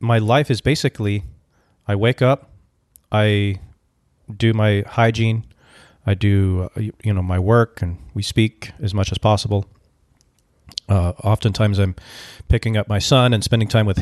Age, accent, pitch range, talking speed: 40-59, American, 95-115 Hz, 155 wpm